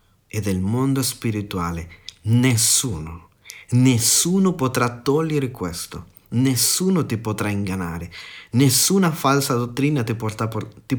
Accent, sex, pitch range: native, male, 105-140 Hz